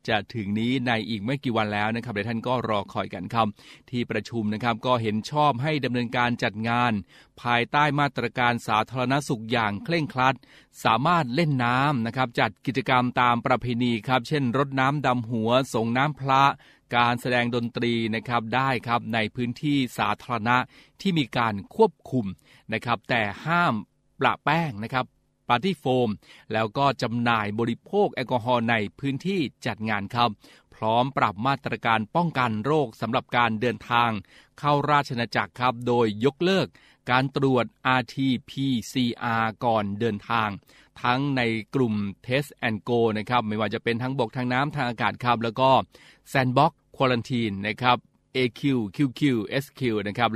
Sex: male